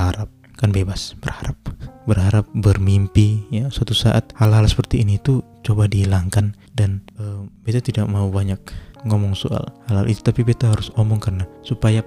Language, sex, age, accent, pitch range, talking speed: Indonesian, male, 20-39, native, 100-115 Hz, 160 wpm